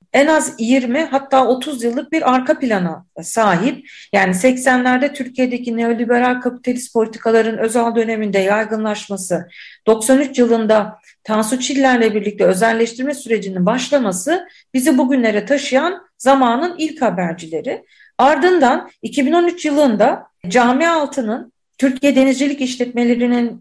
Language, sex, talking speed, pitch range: Turkish, female, 105 wpm, 230-295 Hz